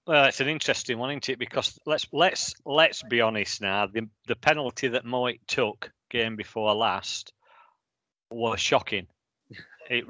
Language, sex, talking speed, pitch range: English, male, 155 wpm, 115-145 Hz